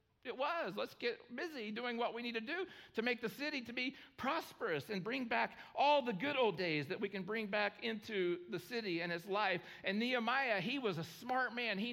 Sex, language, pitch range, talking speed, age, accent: male, English, 175-230 Hz, 225 wpm, 50-69, American